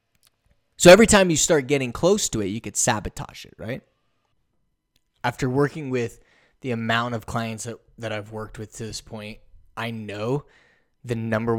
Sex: male